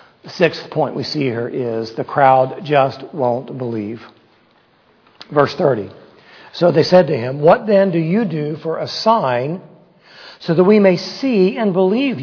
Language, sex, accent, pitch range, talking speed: English, male, American, 145-200 Hz, 160 wpm